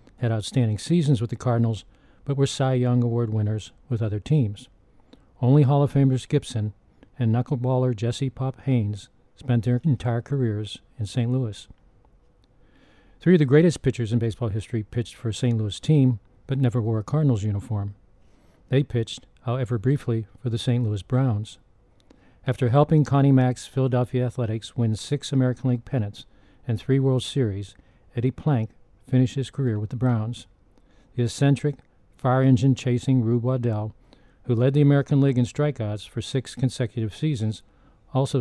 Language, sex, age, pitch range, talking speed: English, male, 50-69, 110-130 Hz, 160 wpm